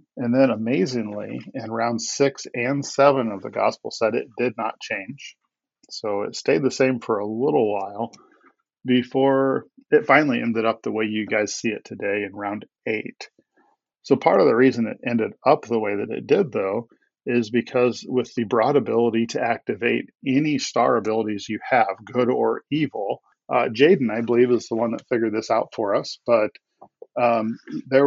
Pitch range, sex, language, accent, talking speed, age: 110-130 Hz, male, English, American, 185 wpm, 40-59